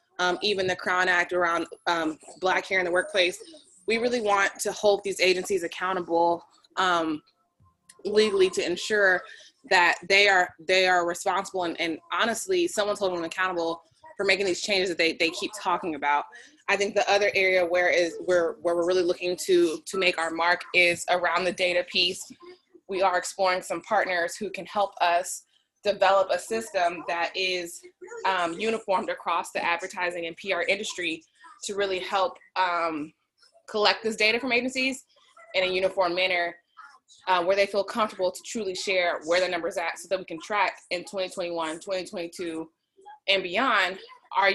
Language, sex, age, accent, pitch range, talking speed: English, female, 20-39, American, 170-200 Hz, 170 wpm